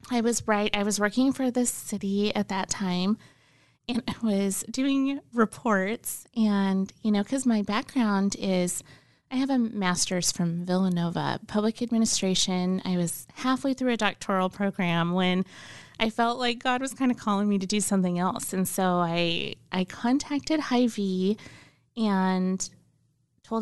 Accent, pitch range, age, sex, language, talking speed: American, 185-235 Hz, 20-39, female, English, 155 wpm